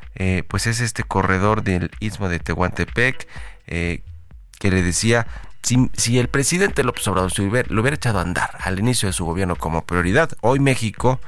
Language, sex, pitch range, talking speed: Spanish, male, 90-115 Hz, 175 wpm